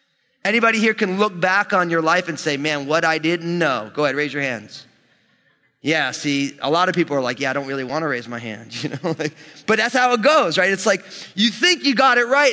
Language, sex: English, male